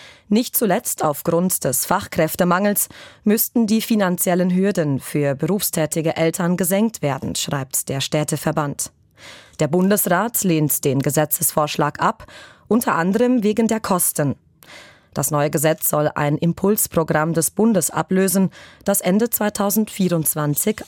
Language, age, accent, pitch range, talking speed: German, 20-39, German, 155-205 Hz, 115 wpm